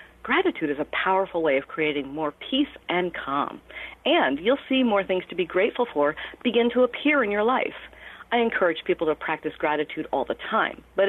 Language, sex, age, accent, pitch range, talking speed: English, female, 50-69, American, 160-245 Hz, 195 wpm